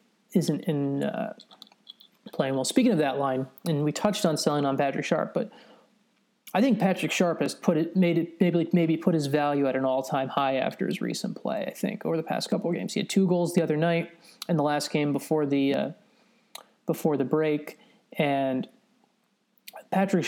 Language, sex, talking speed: English, male, 200 wpm